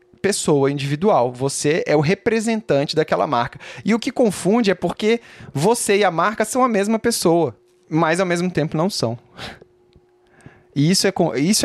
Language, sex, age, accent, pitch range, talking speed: Portuguese, male, 20-39, Brazilian, 130-205 Hz, 165 wpm